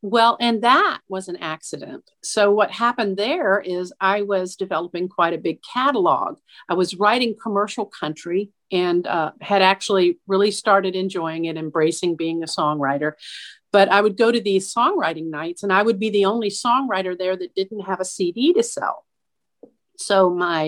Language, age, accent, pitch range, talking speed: English, 50-69, American, 180-235 Hz, 175 wpm